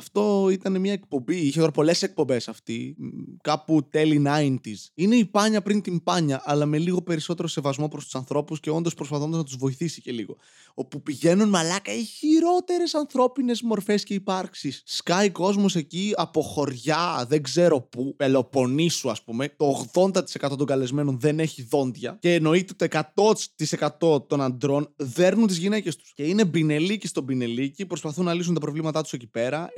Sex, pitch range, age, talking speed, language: male, 140-190 Hz, 20-39, 170 wpm, Greek